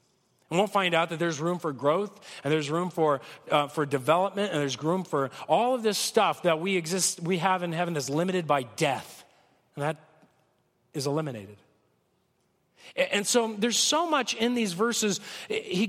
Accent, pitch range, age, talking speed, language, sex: American, 180-245 Hz, 40-59, 180 wpm, English, male